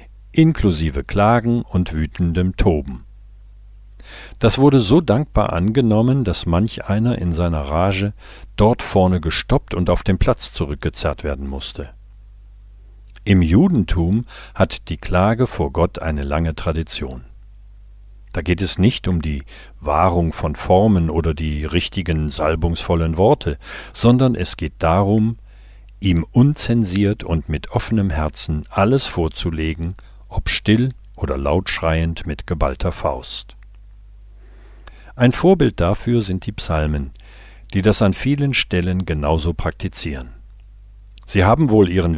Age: 50-69